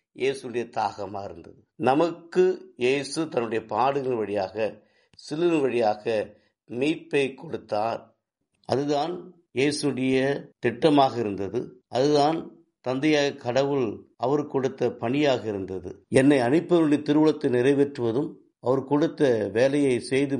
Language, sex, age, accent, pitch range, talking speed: Tamil, male, 50-69, native, 115-145 Hz, 90 wpm